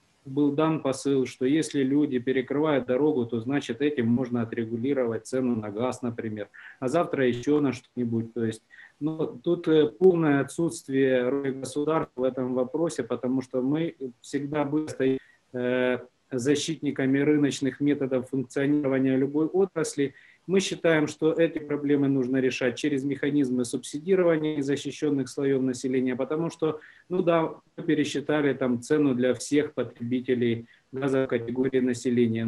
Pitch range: 125-150 Hz